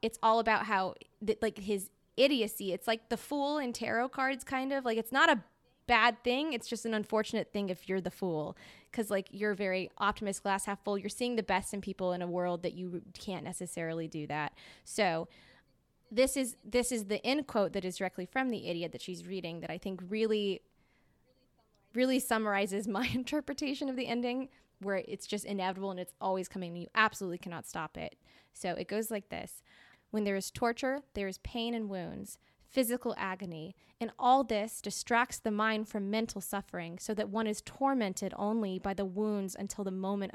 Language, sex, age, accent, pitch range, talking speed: English, female, 20-39, American, 190-230 Hz, 200 wpm